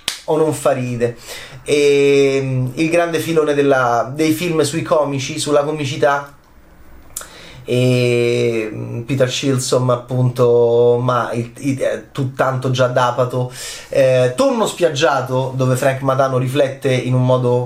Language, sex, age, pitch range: Italian, male, 20-39, 125-155 Hz